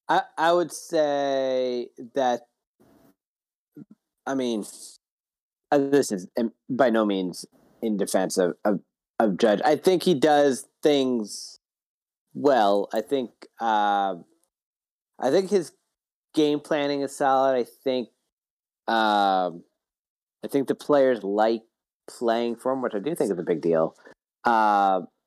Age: 30-49